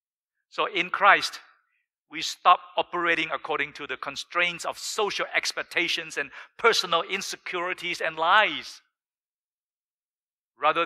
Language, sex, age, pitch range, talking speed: English, male, 50-69, 140-195 Hz, 105 wpm